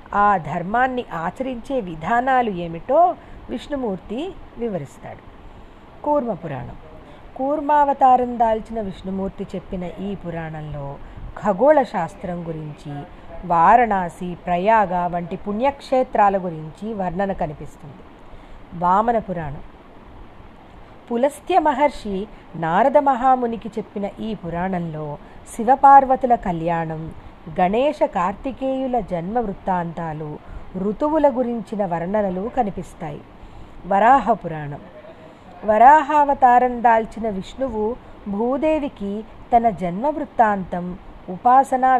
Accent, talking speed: native, 75 wpm